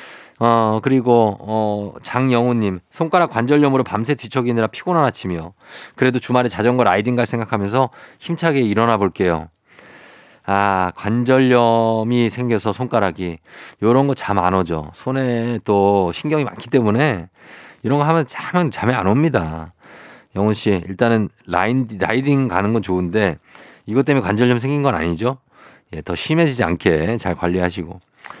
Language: Korean